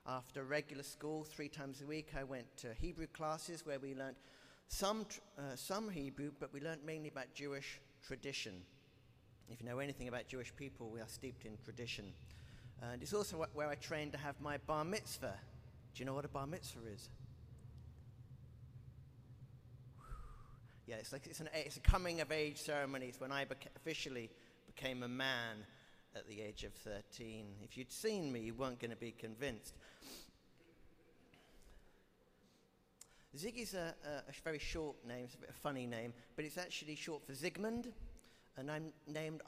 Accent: British